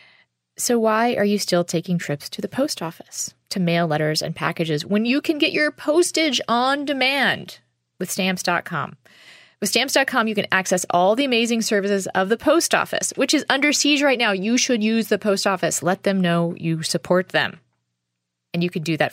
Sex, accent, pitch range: female, American, 155-210 Hz